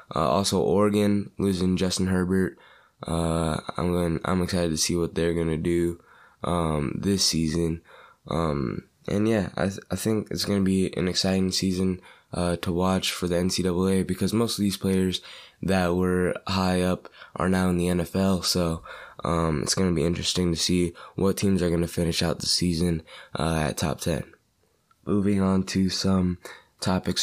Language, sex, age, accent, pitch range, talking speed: English, male, 20-39, American, 85-95 Hz, 170 wpm